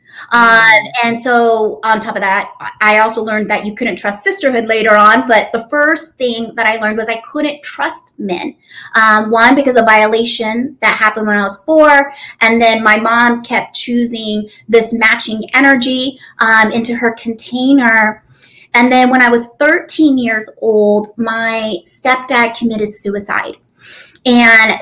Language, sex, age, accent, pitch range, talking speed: English, female, 30-49, American, 220-275 Hz, 160 wpm